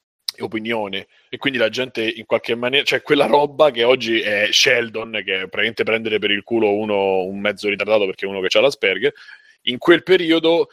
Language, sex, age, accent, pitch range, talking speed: Italian, male, 30-49, native, 110-150 Hz, 190 wpm